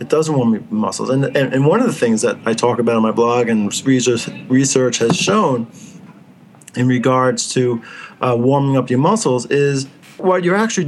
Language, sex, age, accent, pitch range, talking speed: English, male, 40-59, American, 125-165 Hz, 200 wpm